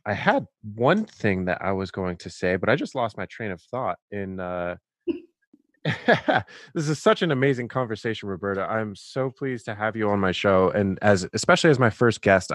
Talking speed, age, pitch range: 205 wpm, 20-39, 100-135 Hz